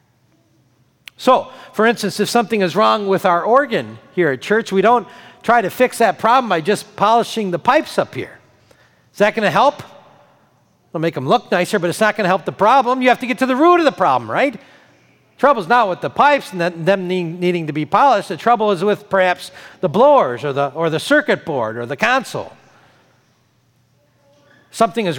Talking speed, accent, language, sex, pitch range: 200 wpm, American, English, male, 165-230 Hz